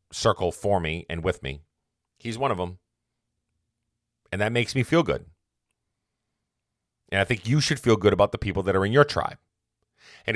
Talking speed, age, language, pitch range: 185 wpm, 40-59, English, 85-110 Hz